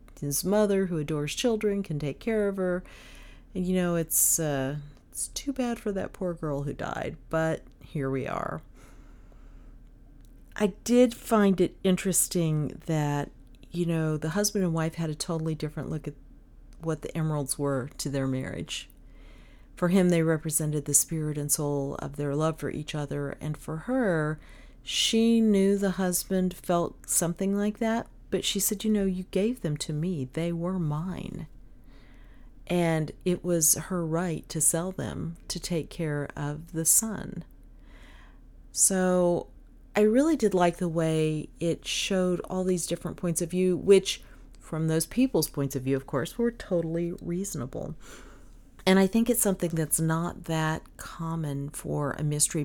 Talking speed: 165 wpm